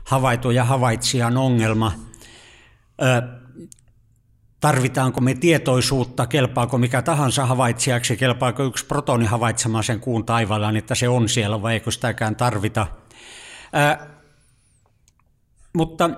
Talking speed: 110 wpm